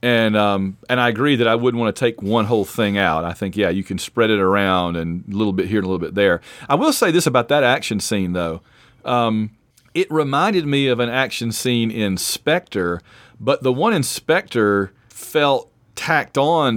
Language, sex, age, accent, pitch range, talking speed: English, male, 40-59, American, 105-125 Hz, 215 wpm